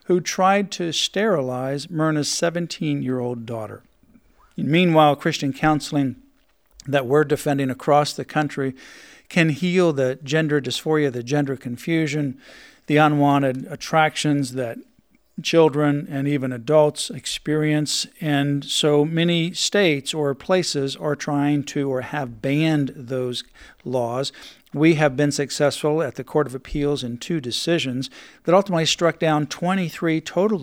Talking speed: 125 wpm